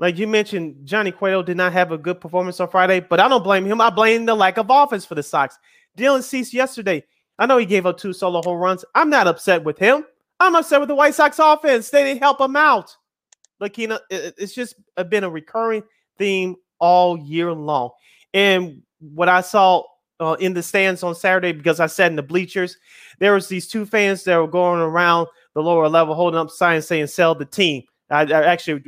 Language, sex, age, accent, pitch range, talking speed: English, male, 30-49, American, 160-210 Hz, 220 wpm